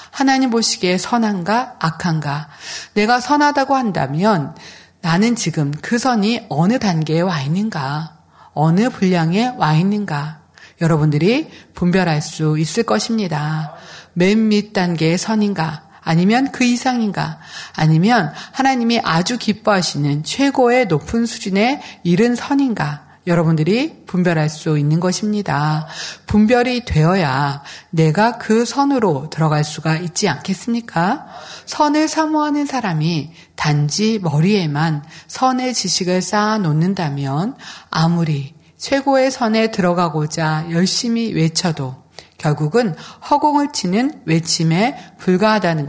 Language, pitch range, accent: Korean, 160-230 Hz, native